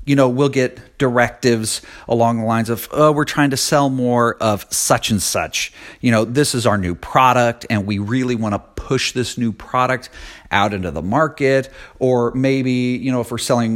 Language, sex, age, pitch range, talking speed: English, male, 40-59, 100-130 Hz, 200 wpm